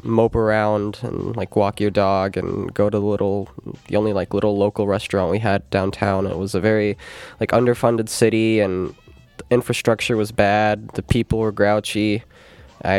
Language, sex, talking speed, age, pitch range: English, male, 170 wpm, 20-39, 105-125 Hz